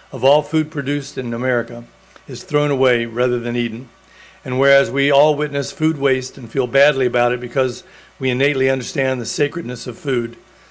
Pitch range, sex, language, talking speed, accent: 130-155 Hz, male, English, 180 wpm, American